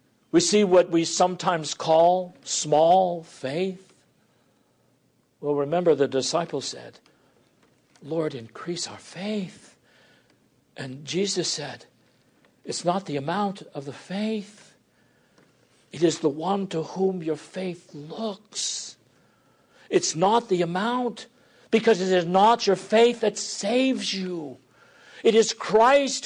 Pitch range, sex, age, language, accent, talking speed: 150-220 Hz, male, 60-79, English, American, 120 wpm